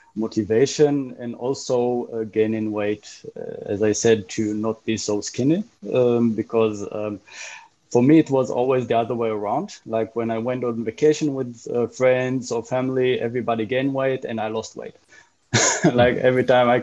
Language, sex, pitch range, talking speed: English, male, 105-120 Hz, 175 wpm